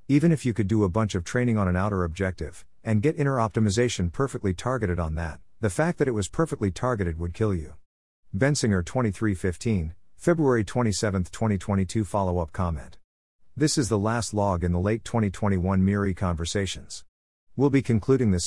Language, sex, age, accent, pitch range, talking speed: English, male, 50-69, American, 90-115 Hz, 170 wpm